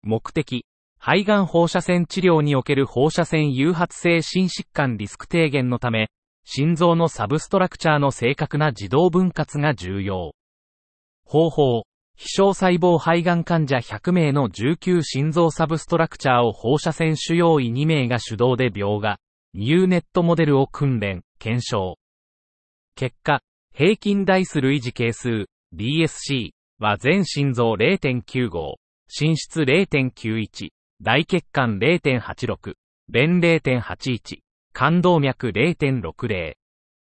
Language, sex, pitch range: Japanese, male, 120-170 Hz